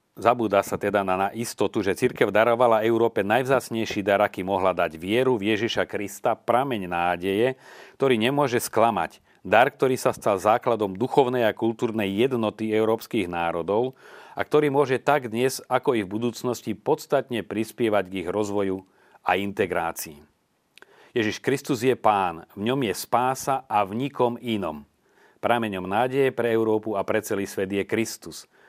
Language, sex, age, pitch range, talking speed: Slovak, male, 40-59, 100-120 Hz, 150 wpm